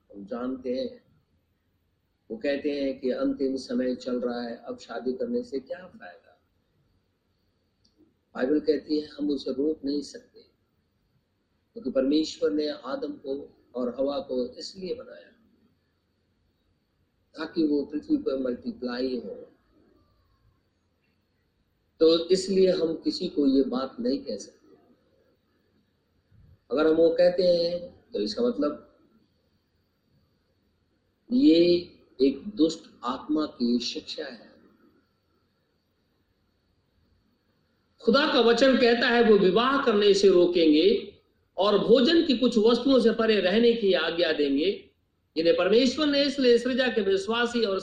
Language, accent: Hindi, native